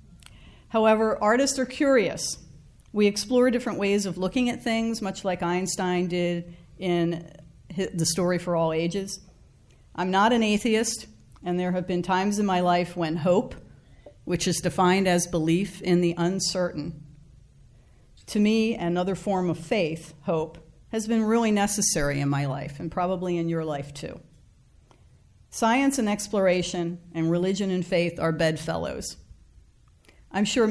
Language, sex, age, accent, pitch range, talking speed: English, female, 50-69, American, 150-195 Hz, 145 wpm